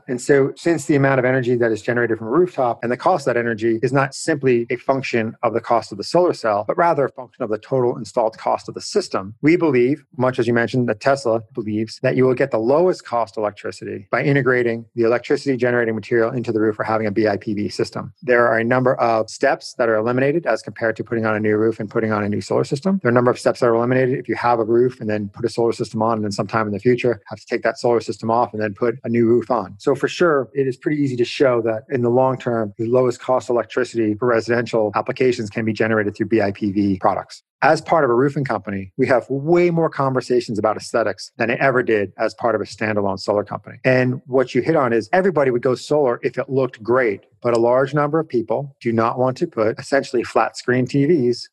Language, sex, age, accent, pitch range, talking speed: English, male, 40-59, American, 110-130 Hz, 255 wpm